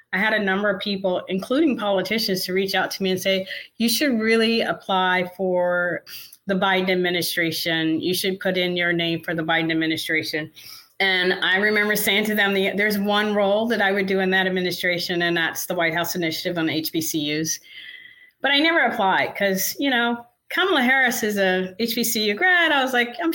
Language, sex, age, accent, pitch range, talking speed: English, female, 30-49, American, 170-220 Hz, 195 wpm